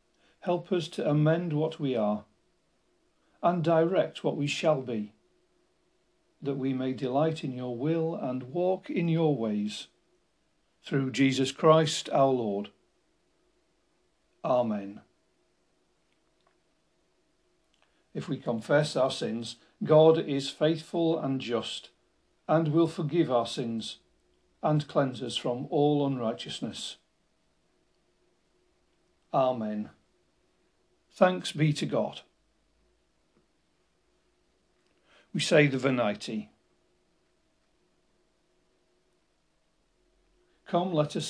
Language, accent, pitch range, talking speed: English, British, 120-160 Hz, 95 wpm